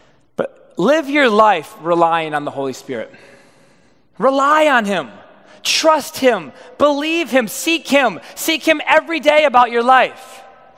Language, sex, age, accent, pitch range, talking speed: English, male, 20-39, American, 220-290 Hz, 135 wpm